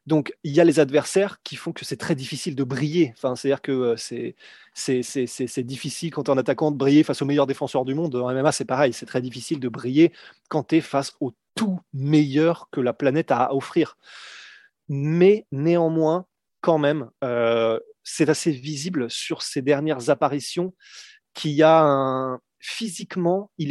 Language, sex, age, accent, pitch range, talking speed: French, male, 30-49, French, 135-170 Hz, 190 wpm